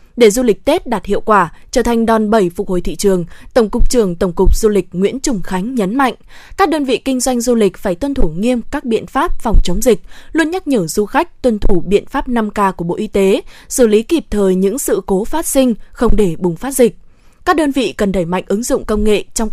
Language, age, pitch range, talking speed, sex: Vietnamese, 20-39, 195-260 Hz, 255 wpm, female